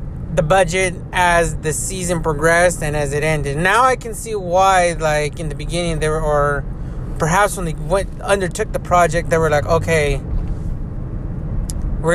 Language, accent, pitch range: English, American, 145-180 Hz